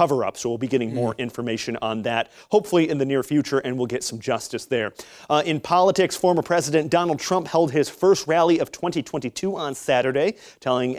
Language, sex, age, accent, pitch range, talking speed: English, male, 30-49, American, 125-160 Hz, 190 wpm